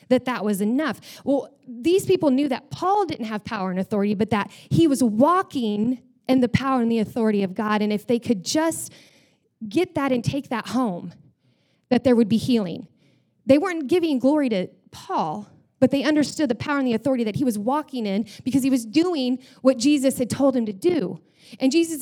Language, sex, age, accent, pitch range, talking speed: English, female, 30-49, American, 225-285 Hz, 205 wpm